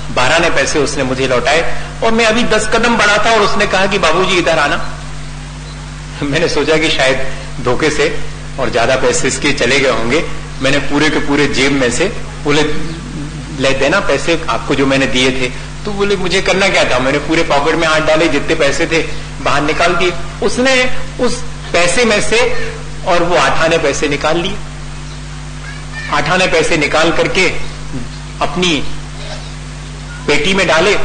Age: 40-59